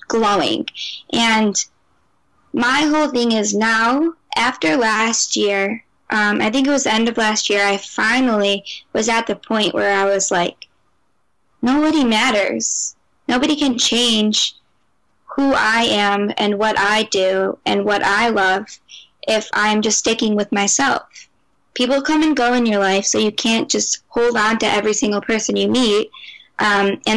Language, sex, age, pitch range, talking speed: English, female, 10-29, 205-240 Hz, 160 wpm